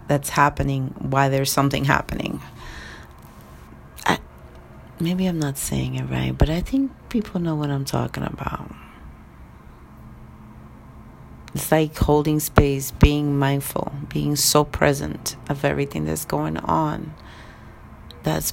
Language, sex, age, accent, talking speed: English, female, 40-59, American, 115 wpm